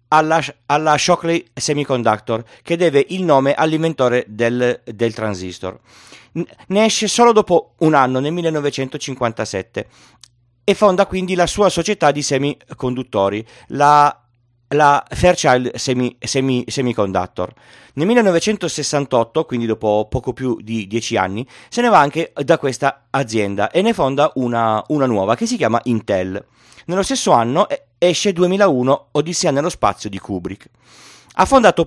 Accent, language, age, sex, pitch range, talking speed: native, Italian, 30-49, male, 115-170 Hz, 135 wpm